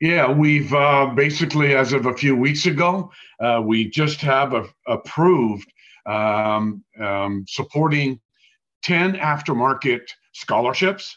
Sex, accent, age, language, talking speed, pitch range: male, American, 50-69, English, 115 wpm, 115-150 Hz